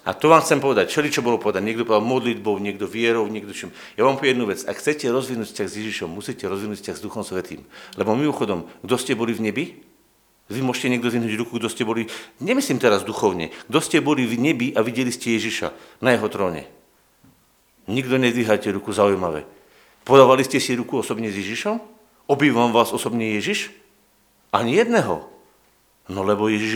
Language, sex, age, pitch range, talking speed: Slovak, male, 50-69, 115-150 Hz, 180 wpm